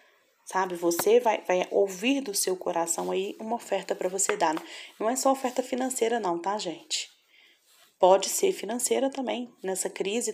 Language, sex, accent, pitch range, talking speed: Portuguese, female, Brazilian, 180-260 Hz, 165 wpm